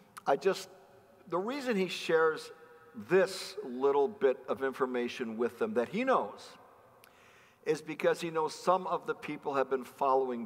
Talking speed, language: 155 wpm, English